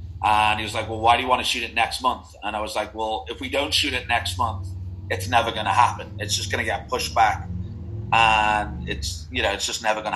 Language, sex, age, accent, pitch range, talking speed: English, male, 30-49, British, 105-115 Hz, 270 wpm